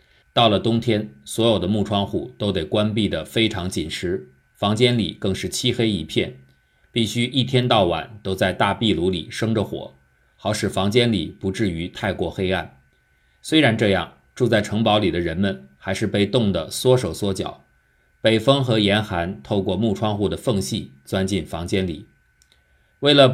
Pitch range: 85-115 Hz